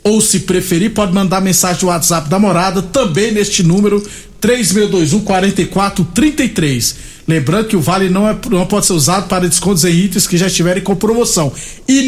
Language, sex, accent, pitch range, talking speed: Portuguese, male, Brazilian, 170-210 Hz, 170 wpm